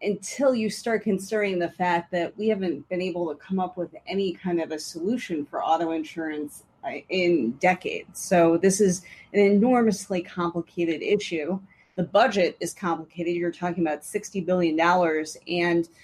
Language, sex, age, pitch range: English, female, 30-49, 170-200 Hz